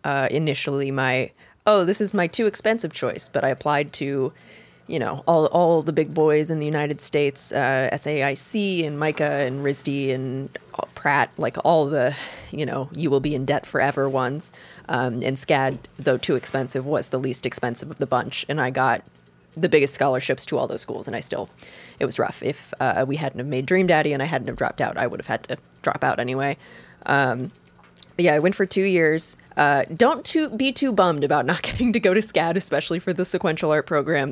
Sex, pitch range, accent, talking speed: female, 135-165 Hz, American, 215 wpm